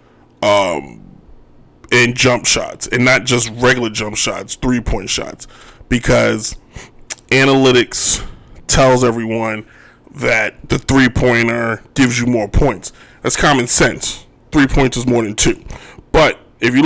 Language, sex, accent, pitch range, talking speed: English, male, American, 120-135 Hz, 125 wpm